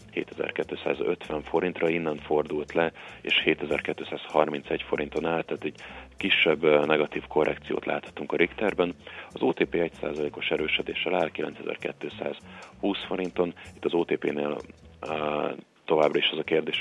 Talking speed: 115 wpm